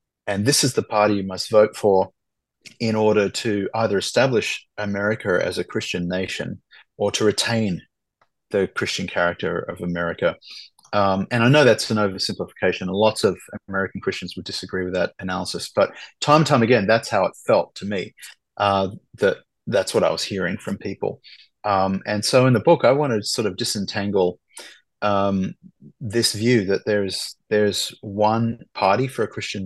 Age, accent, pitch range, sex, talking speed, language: 30-49, Australian, 95-110 Hz, male, 180 wpm, English